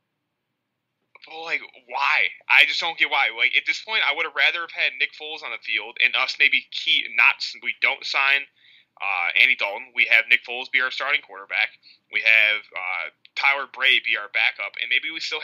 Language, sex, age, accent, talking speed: English, male, 20-39, American, 205 wpm